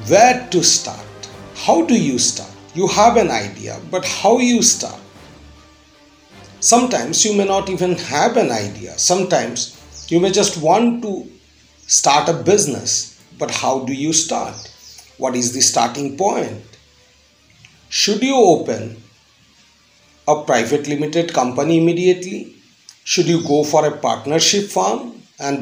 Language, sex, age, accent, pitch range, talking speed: English, male, 40-59, Indian, 135-195 Hz, 140 wpm